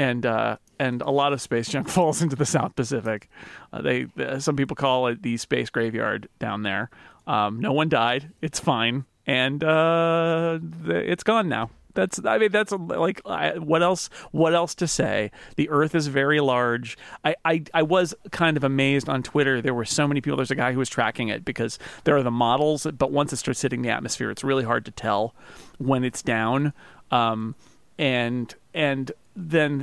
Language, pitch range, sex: English, 120-155 Hz, male